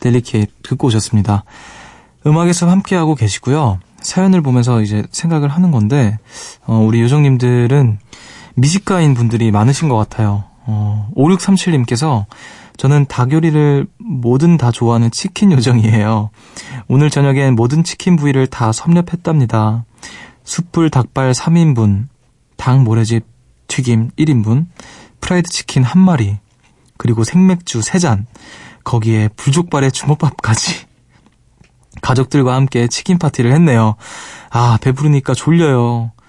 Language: Korean